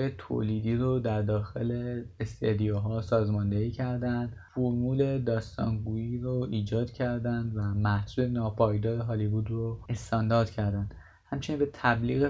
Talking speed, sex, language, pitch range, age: 105 wpm, male, Persian, 105-125 Hz, 20-39